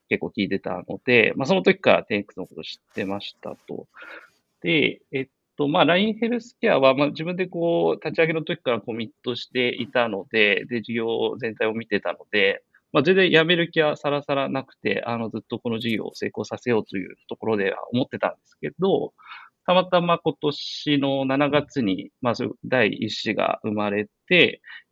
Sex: male